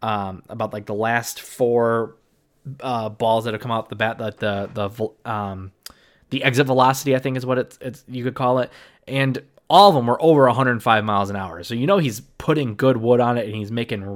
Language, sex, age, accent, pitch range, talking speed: English, male, 20-39, American, 110-140 Hz, 225 wpm